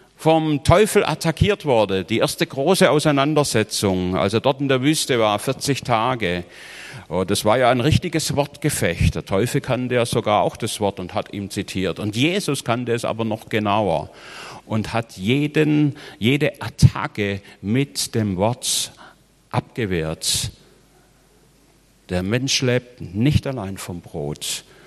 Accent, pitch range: German, 105-150 Hz